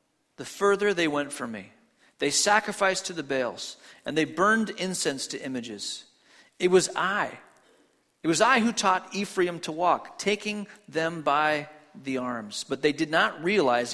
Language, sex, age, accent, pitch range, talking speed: English, male, 40-59, American, 150-205 Hz, 165 wpm